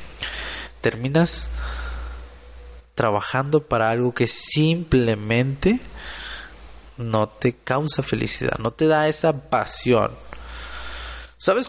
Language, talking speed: Spanish, 80 wpm